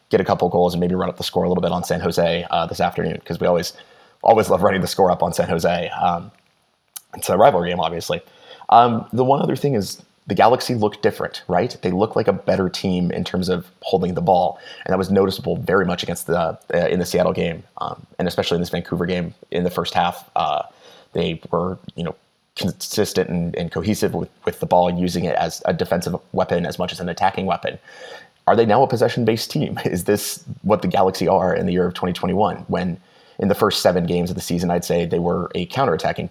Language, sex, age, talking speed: English, male, 30-49, 235 wpm